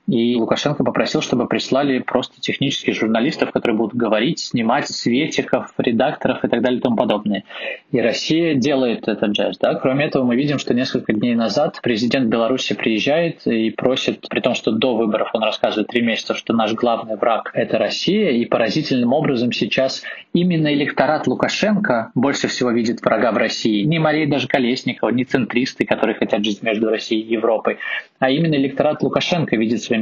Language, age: Russian, 20-39